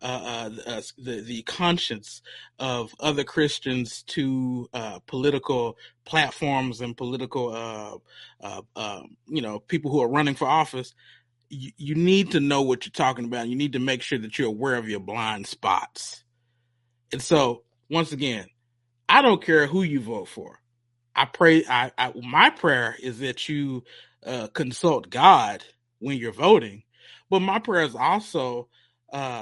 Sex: male